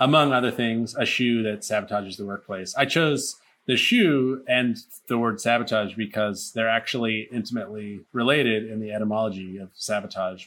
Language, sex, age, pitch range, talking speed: English, male, 30-49, 105-125 Hz, 155 wpm